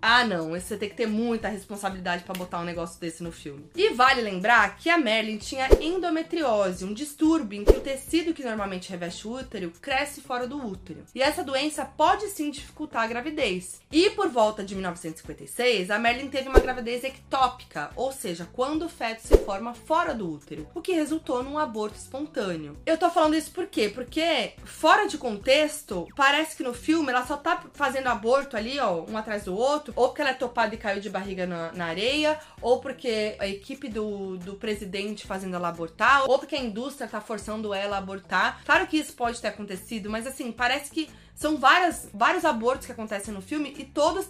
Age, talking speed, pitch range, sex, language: 20-39, 200 wpm, 205-305 Hz, female, Portuguese